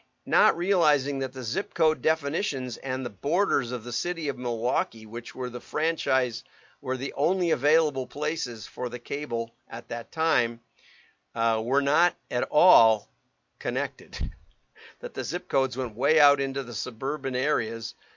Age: 50-69